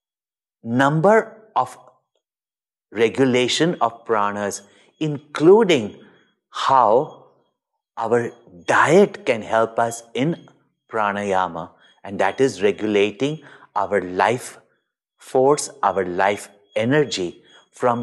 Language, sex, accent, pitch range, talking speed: English, male, Indian, 120-190 Hz, 85 wpm